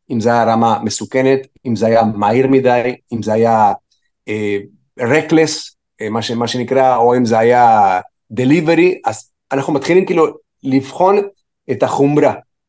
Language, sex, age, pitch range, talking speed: Hebrew, male, 30-49, 125-165 Hz, 150 wpm